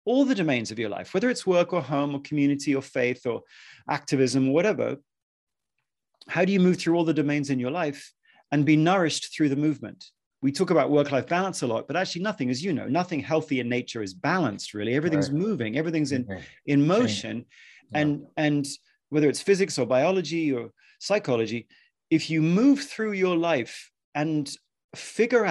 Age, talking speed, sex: 40-59, 185 wpm, male